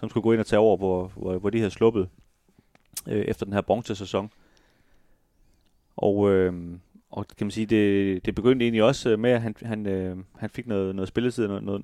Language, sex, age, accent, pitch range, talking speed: Danish, male, 30-49, native, 100-120 Hz, 205 wpm